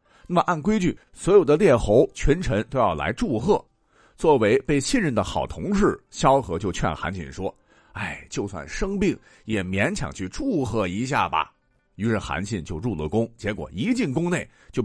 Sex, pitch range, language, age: male, 110-180 Hz, Chinese, 50-69